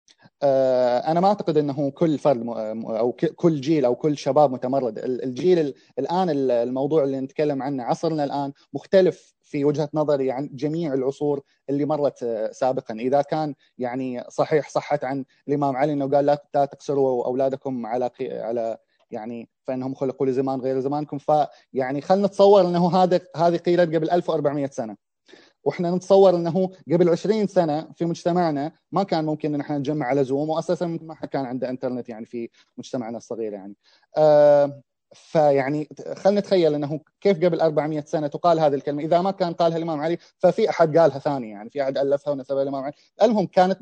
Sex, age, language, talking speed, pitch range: male, 20-39, Arabic, 165 wpm, 135-170 Hz